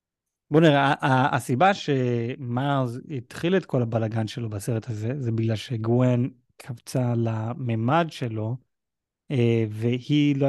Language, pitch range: Hebrew, 115-140 Hz